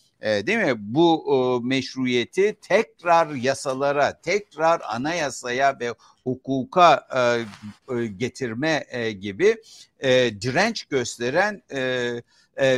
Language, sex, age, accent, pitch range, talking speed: Turkish, male, 60-79, native, 125-155 Hz, 100 wpm